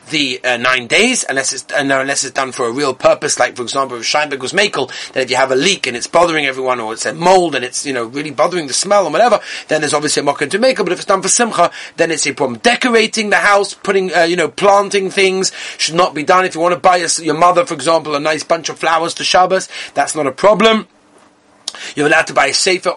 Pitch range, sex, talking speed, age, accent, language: 140-190 Hz, male, 265 wpm, 30-49, British, English